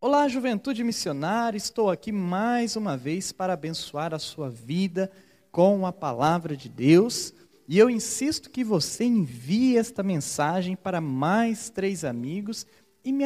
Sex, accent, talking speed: male, Brazilian, 145 wpm